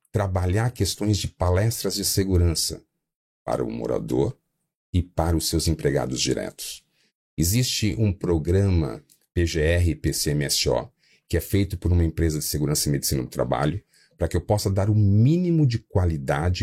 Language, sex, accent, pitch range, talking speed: Portuguese, male, Brazilian, 80-105 Hz, 150 wpm